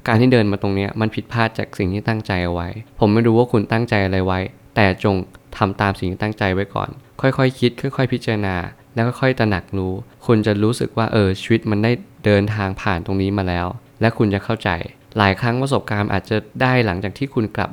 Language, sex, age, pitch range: Thai, male, 20-39, 100-120 Hz